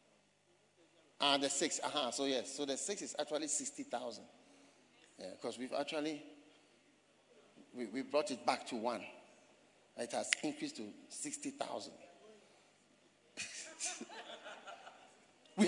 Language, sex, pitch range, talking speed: English, male, 190-275 Hz, 110 wpm